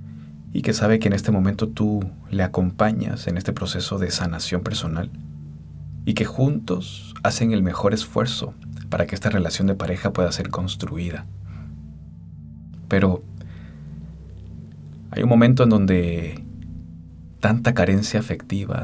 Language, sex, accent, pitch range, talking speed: Spanish, male, Mexican, 80-105 Hz, 130 wpm